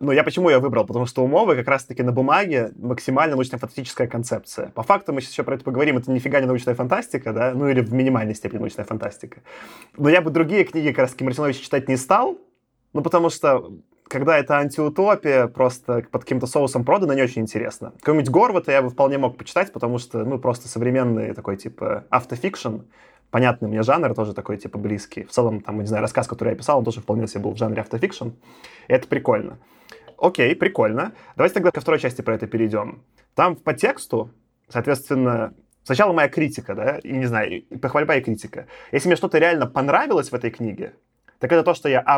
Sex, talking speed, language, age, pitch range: male, 200 wpm, Russian, 20-39, 115-145 Hz